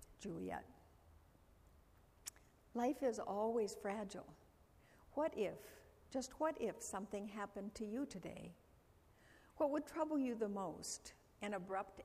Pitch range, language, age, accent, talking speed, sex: 180-235 Hz, English, 60-79, American, 115 wpm, female